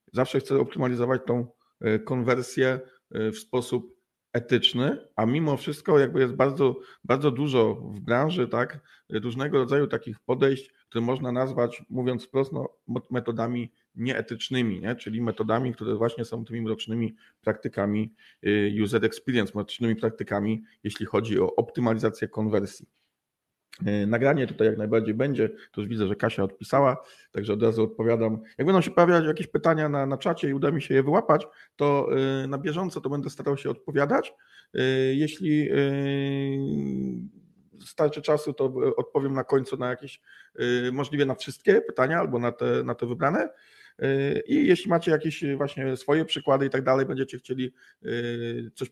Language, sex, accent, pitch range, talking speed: Polish, male, native, 110-140 Hz, 145 wpm